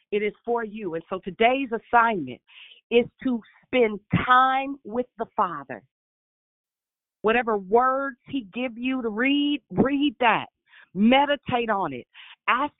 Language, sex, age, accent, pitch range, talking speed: English, female, 40-59, American, 200-260 Hz, 130 wpm